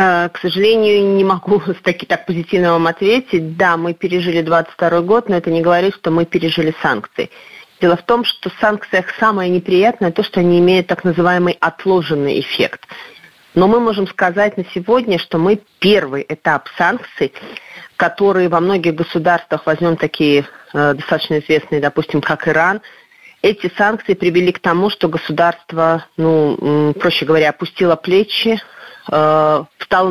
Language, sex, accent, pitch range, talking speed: Russian, female, native, 155-190 Hz, 145 wpm